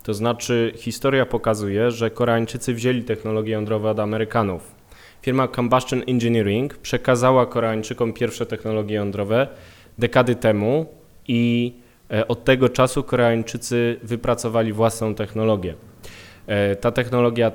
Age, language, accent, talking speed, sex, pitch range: 20-39, Polish, native, 105 wpm, male, 105-125 Hz